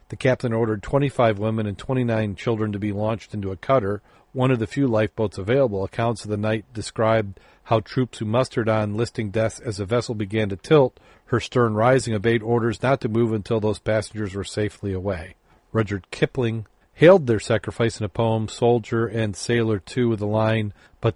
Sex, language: male, English